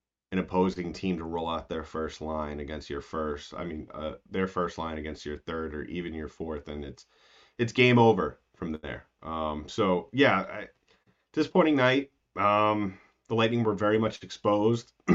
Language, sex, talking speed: English, male, 175 wpm